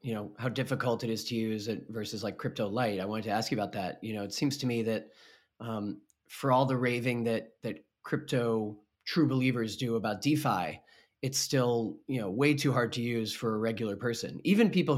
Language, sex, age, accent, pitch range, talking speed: English, male, 30-49, American, 115-140 Hz, 220 wpm